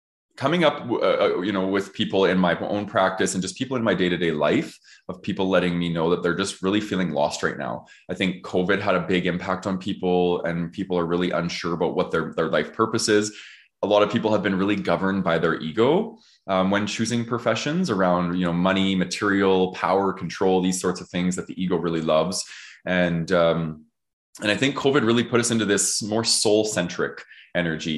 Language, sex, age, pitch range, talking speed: English, male, 20-39, 85-100 Hz, 210 wpm